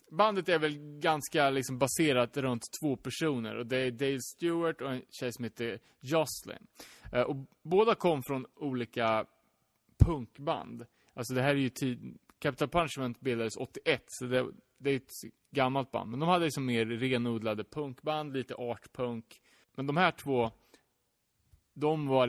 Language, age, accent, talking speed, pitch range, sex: Swedish, 30-49, Norwegian, 150 wpm, 115-150 Hz, male